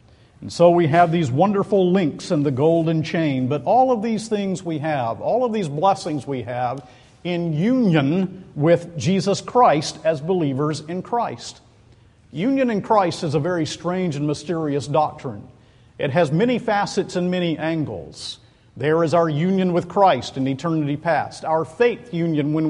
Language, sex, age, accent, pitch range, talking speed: English, male, 50-69, American, 130-170 Hz, 165 wpm